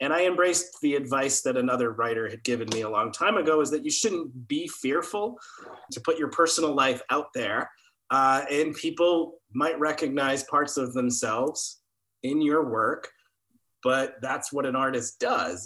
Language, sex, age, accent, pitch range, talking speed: English, male, 30-49, American, 120-160 Hz, 175 wpm